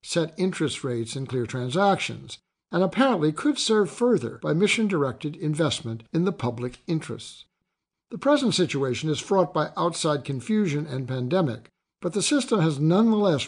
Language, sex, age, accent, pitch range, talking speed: English, male, 60-79, American, 140-195 Hz, 145 wpm